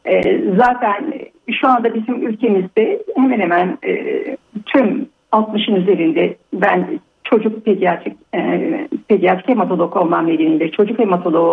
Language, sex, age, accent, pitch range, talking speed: Turkish, female, 60-79, native, 180-250 Hz, 100 wpm